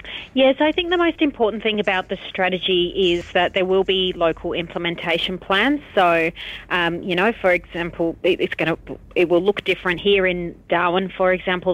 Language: English